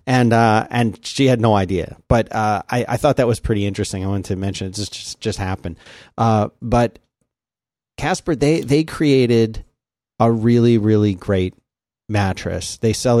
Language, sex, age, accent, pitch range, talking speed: English, male, 30-49, American, 100-115 Hz, 175 wpm